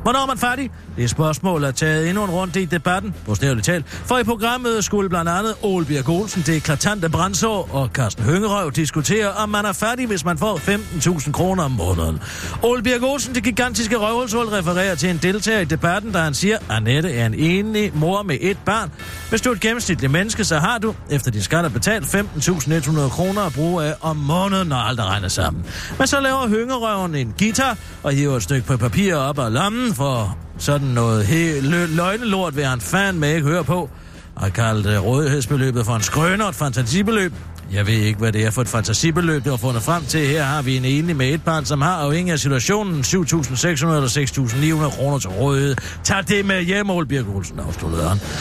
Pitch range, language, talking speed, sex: 135-200 Hz, Danish, 205 wpm, male